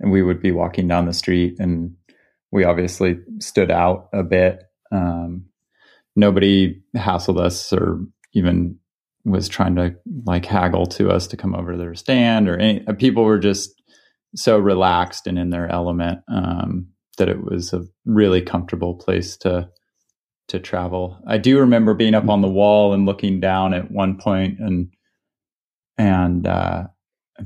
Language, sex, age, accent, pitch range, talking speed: English, male, 30-49, American, 90-110 Hz, 160 wpm